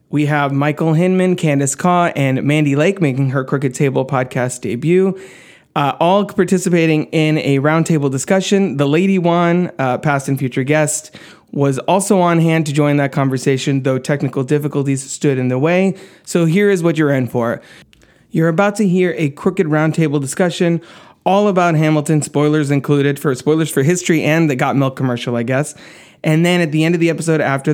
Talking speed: 185 wpm